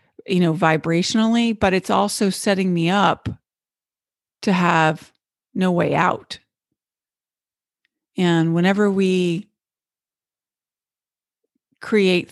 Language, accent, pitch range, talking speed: English, American, 160-200 Hz, 90 wpm